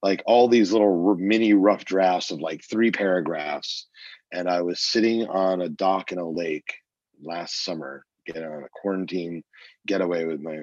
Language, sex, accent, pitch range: English, male, American, 80-100 Hz